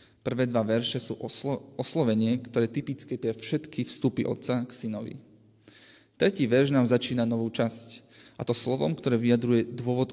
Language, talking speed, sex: Slovak, 155 wpm, male